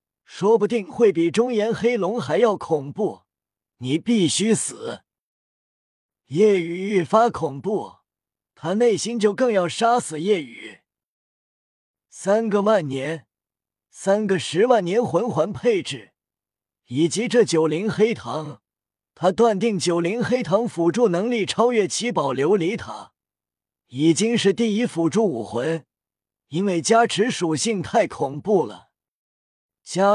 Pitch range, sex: 160-220 Hz, male